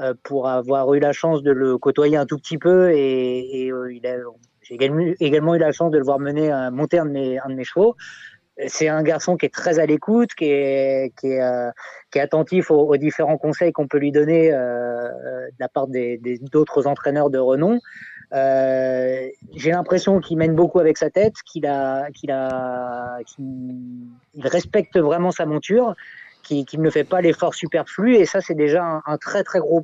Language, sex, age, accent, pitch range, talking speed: French, male, 20-39, French, 130-165 Hz, 210 wpm